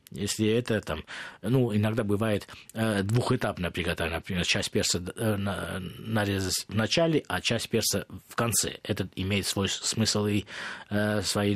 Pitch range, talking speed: 100-125 Hz, 150 wpm